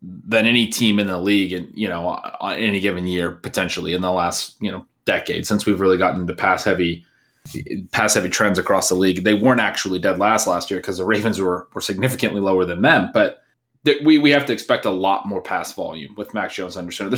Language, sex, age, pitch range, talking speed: English, male, 20-39, 95-110 Hz, 230 wpm